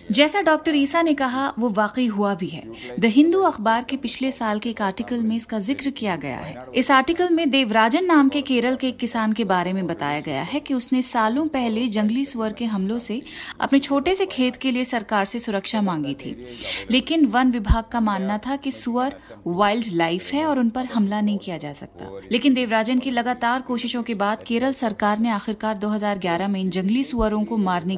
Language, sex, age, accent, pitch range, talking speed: Hindi, female, 30-49, native, 200-260 Hz, 210 wpm